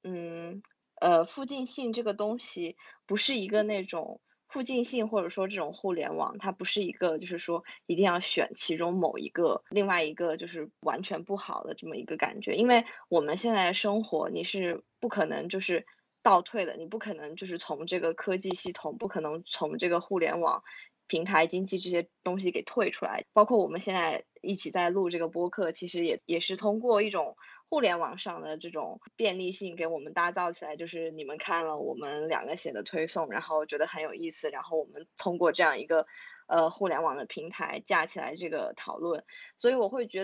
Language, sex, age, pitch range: Chinese, female, 20-39, 170-210 Hz